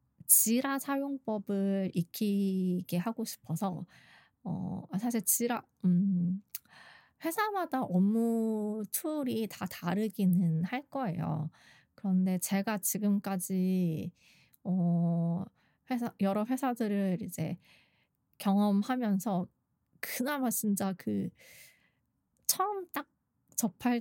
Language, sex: Korean, female